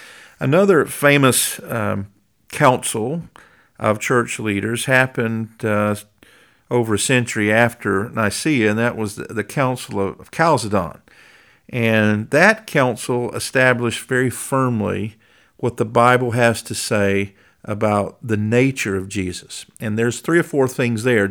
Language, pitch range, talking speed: English, 105-130 Hz, 130 wpm